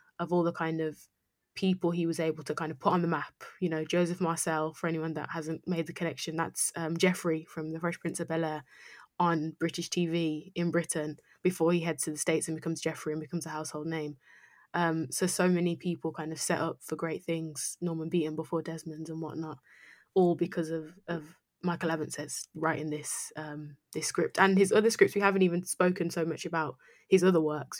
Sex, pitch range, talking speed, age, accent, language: female, 160-175 Hz, 210 wpm, 20-39, British, English